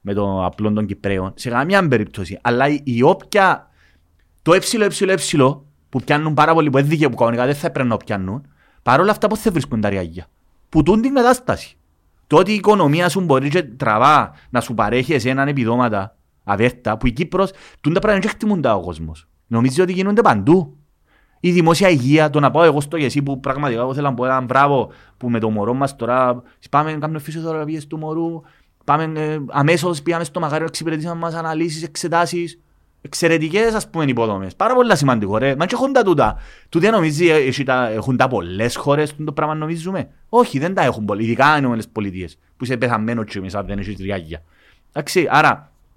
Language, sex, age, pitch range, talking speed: Greek, male, 30-49, 115-170 Hz, 135 wpm